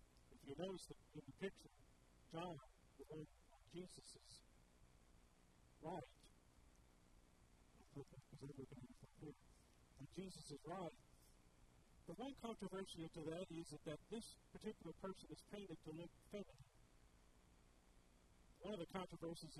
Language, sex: English, male